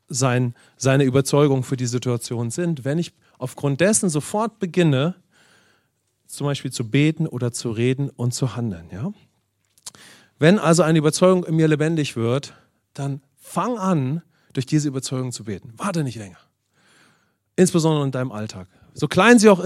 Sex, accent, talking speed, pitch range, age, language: male, German, 155 wpm, 130-170 Hz, 40-59, English